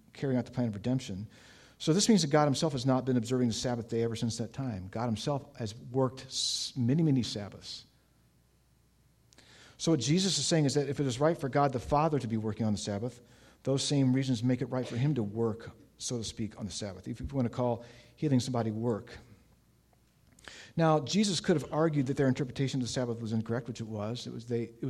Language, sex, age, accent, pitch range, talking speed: English, male, 50-69, American, 115-135 Hz, 220 wpm